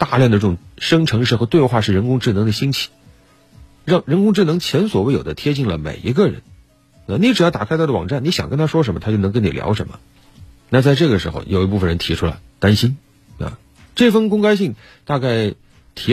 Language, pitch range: Chinese, 100-155 Hz